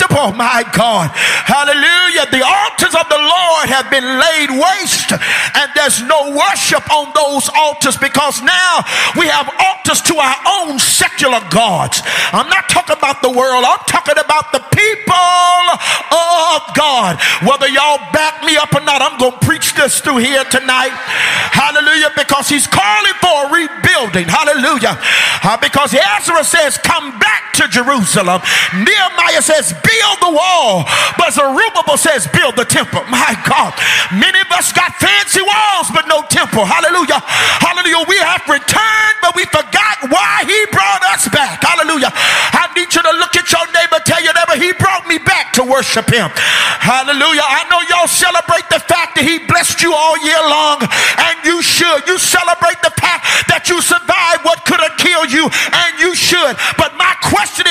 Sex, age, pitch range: male, 50-69, 285-350 Hz